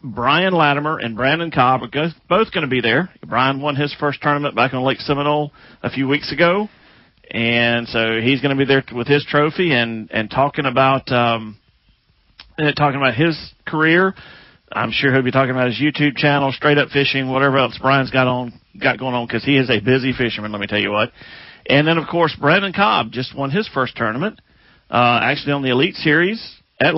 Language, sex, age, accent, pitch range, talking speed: English, male, 40-59, American, 120-145 Hz, 205 wpm